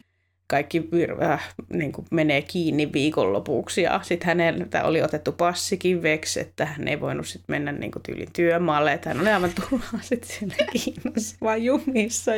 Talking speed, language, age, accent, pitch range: 140 wpm, Finnish, 20-39, native, 165-210 Hz